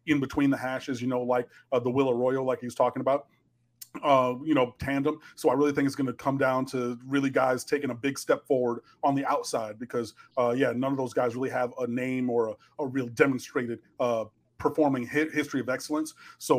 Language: English